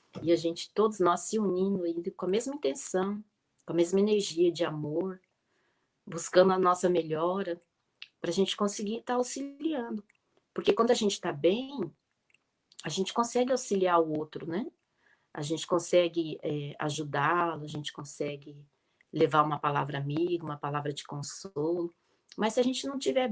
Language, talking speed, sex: Portuguese, 160 wpm, female